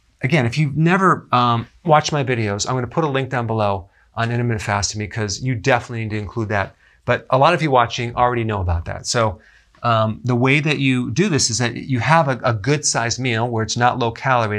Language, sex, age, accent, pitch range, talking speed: English, male, 40-59, American, 115-140 Hz, 240 wpm